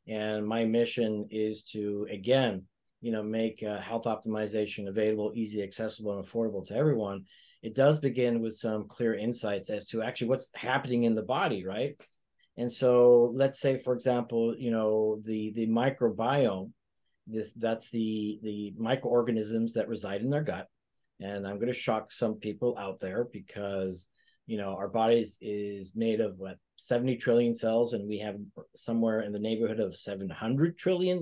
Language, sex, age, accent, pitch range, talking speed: English, male, 40-59, American, 110-125 Hz, 165 wpm